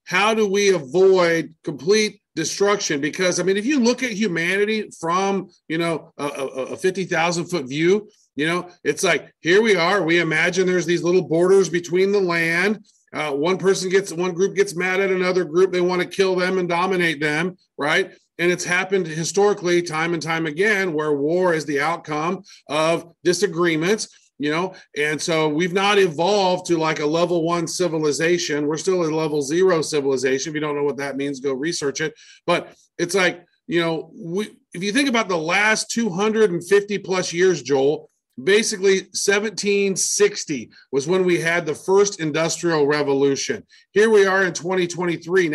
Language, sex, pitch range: English, male, 160-195 Hz